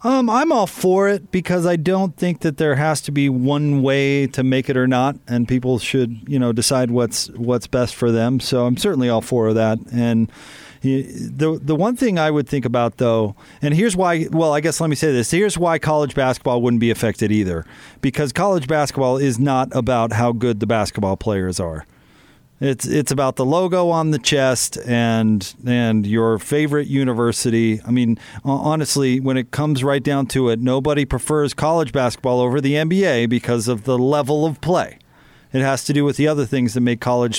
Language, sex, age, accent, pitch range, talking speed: English, male, 40-59, American, 120-150 Hz, 200 wpm